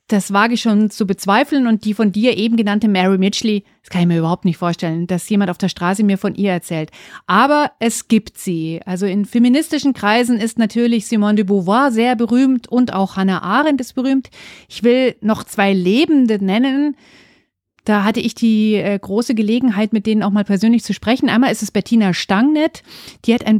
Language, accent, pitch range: German, German, 195-235 Hz